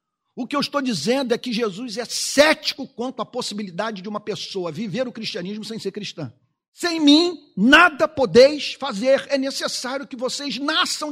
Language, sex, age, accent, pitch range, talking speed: Portuguese, male, 50-69, Brazilian, 205-310 Hz, 175 wpm